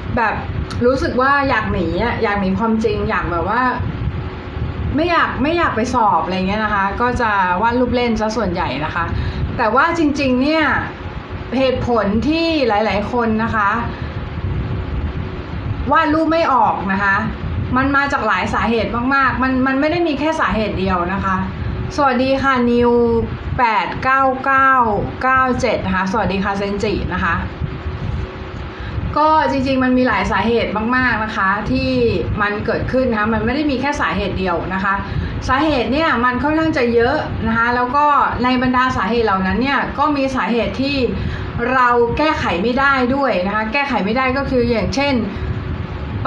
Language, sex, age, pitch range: Thai, female, 20-39, 215-270 Hz